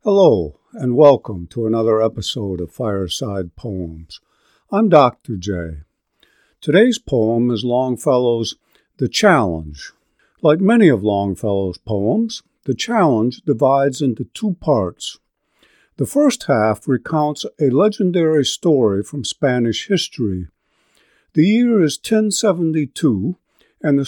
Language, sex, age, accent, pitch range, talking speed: English, male, 50-69, American, 110-165 Hz, 110 wpm